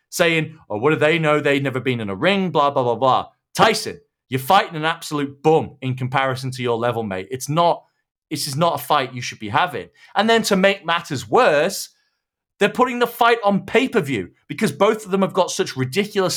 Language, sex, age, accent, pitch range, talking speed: English, male, 30-49, British, 135-185 Hz, 215 wpm